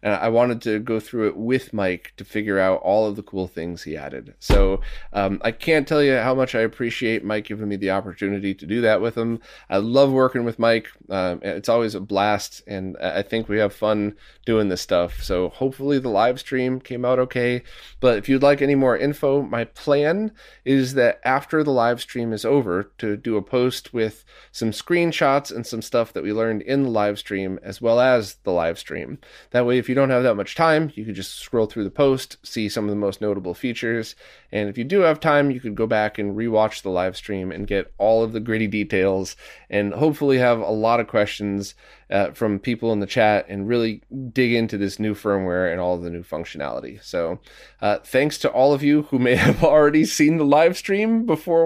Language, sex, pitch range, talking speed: English, male, 100-130 Hz, 220 wpm